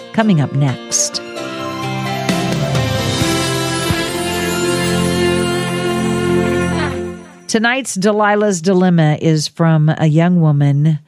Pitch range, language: 145-180 Hz, English